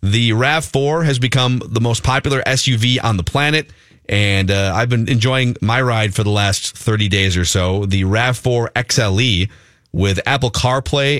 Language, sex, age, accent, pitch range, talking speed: English, male, 30-49, American, 105-145 Hz, 165 wpm